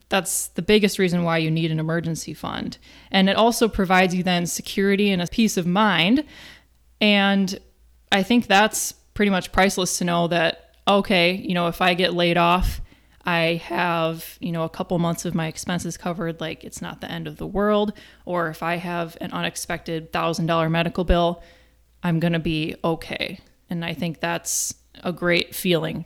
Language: English